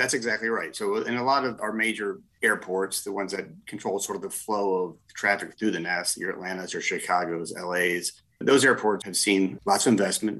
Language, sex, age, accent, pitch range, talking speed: English, male, 30-49, American, 90-110 Hz, 210 wpm